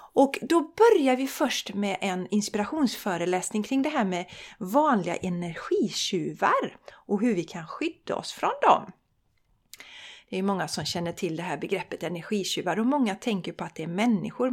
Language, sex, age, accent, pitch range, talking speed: Swedish, female, 40-59, native, 185-275 Hz, 165 wpm